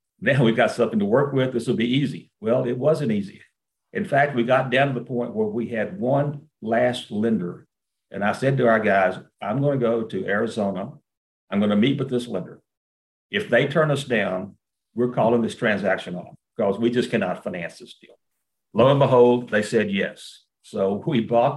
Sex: male